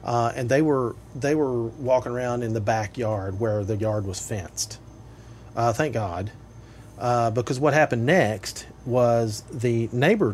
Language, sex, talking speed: English, male, 155 wpm